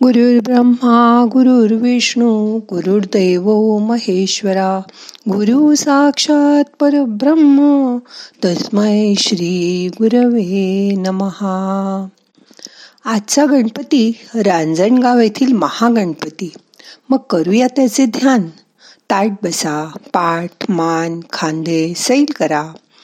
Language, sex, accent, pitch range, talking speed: Marathi, female, native, 180-245 Hz, 70 wpm